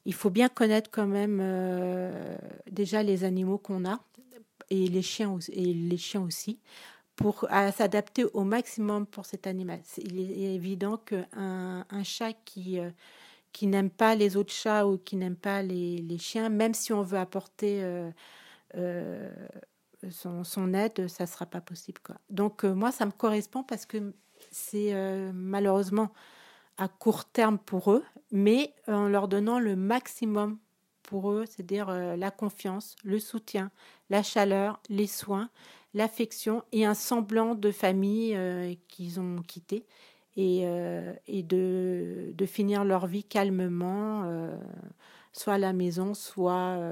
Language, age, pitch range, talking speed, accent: French, 40-59, 185-215 Hz, 160 wpm, French